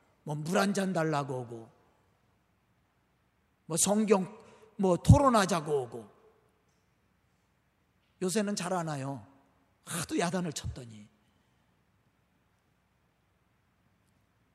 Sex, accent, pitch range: male, native, 185-280 Hz